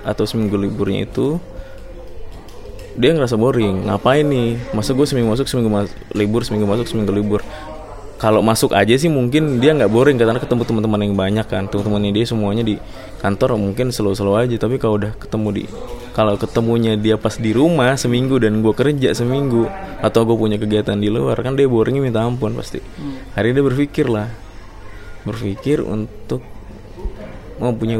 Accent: Indonesian